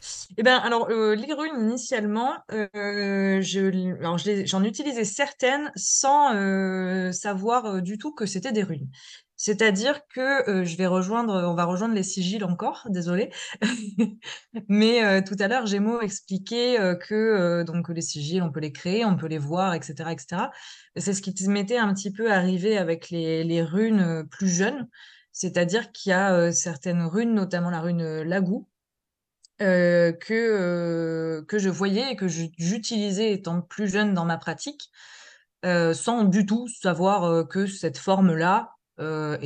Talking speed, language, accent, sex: 170 wpm, French, French, female